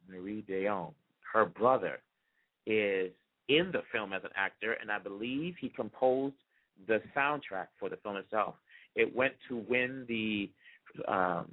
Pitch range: 95-125 Hz